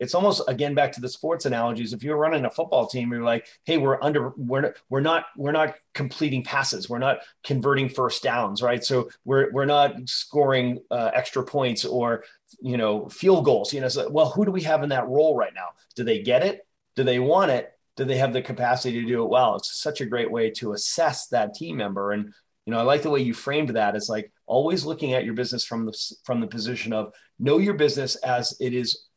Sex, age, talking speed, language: male, 30-49, 235 wpm, English